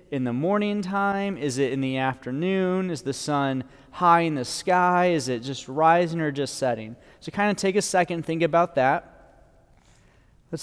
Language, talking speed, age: English, 190 wpm, 20-39